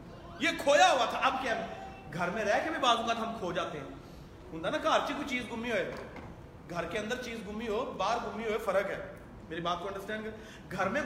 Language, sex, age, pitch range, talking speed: Urdu, male, 30-49, 200-300 Hz, 155 wpm